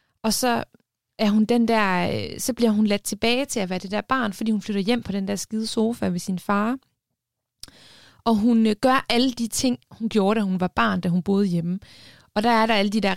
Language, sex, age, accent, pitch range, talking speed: Danish, female, 20-39, native, 180-220 Hz, 235 wpm